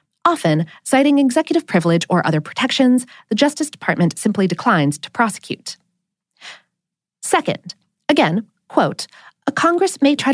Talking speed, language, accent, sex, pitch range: 120 wpm, English, American, female, 180-280 Hz